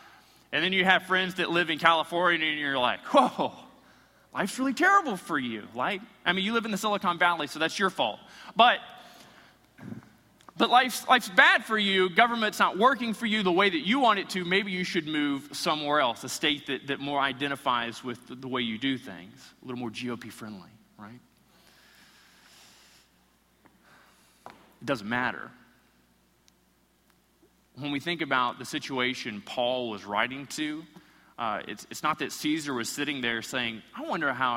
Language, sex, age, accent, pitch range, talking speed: English, male, 30-49, American, 130-210 Hz, 175 wpm